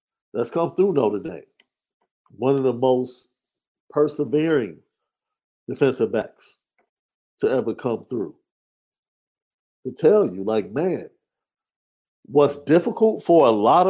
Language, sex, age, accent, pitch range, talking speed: English, male, 50-69, American, 120-160 Hz, 110 wpm